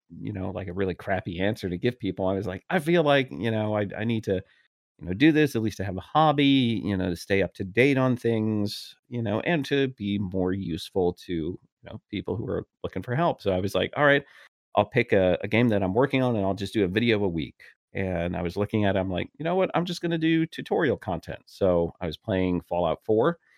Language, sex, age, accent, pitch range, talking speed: English, male, 40-59, American, 95-115 Hz, 260 wpm